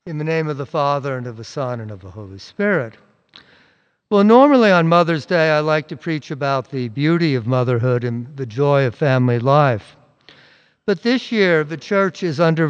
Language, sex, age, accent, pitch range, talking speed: English, male, 60-79, American, 130-165 Hz, 200 wpm